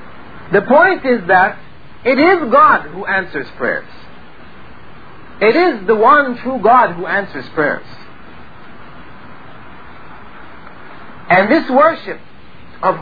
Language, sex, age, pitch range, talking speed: Filipino, male, 50-69, 180-255 Hz, 105 wpm